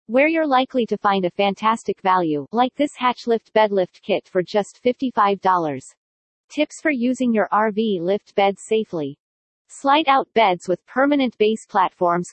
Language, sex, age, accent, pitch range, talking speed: English, female, 40-59, American, 190-235 Hz, 150 wpm